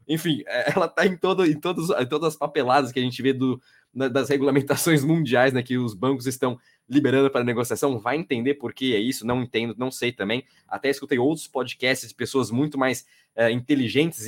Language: Portuguese